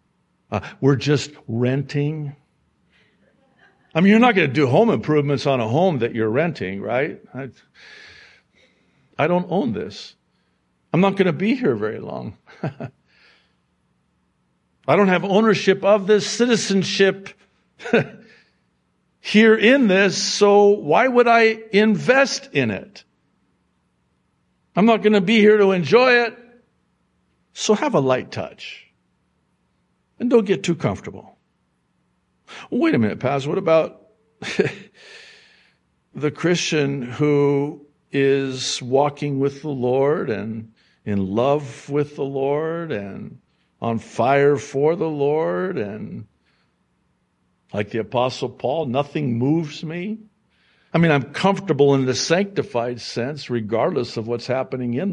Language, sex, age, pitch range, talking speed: English, male, 60-79, 130-200 Hz, 125 wpm